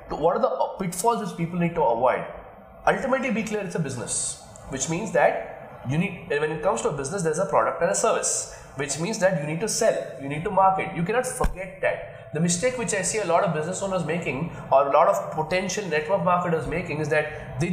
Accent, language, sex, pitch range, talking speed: Indian, English, male, 155-225 Hz, 225 wpm